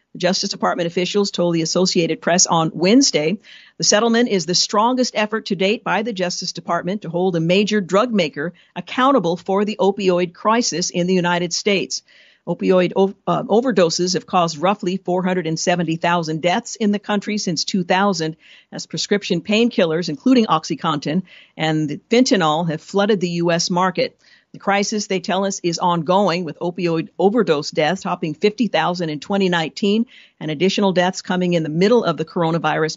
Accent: American